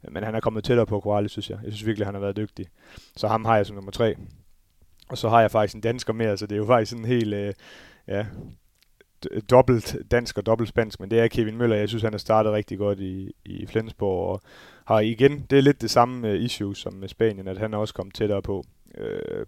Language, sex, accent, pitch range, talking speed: Danish, male, native, 100-115 Hz, 250 wpm